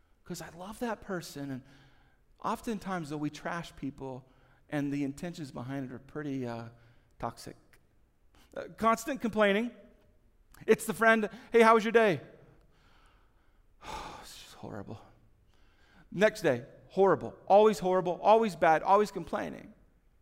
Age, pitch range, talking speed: 40-59, 145-215 Hz, 130 wpm